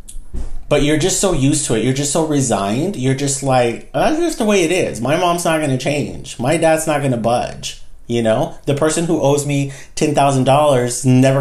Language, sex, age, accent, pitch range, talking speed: English, male, 40-59, American, 125-160 Hz, 220 wpm